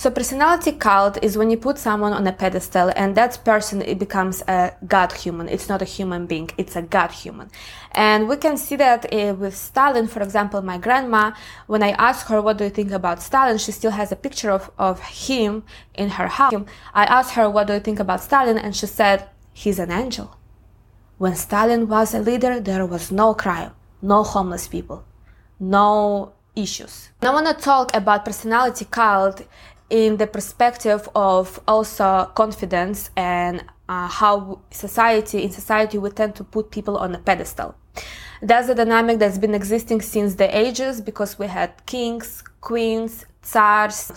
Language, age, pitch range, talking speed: English, 20-39, 195-230 Hz, 180 wpm